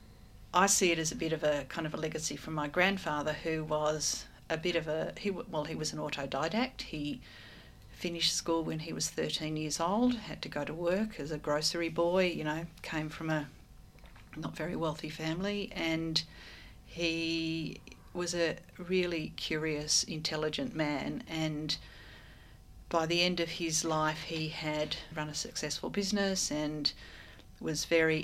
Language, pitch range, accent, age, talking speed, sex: English, 150-170 Hz, Australian, 40-59, 165 wpm, female